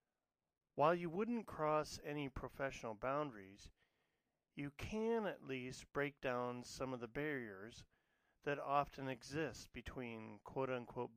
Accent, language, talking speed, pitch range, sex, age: American, English, 120 wpm, 120-155 Hz, male, 40-59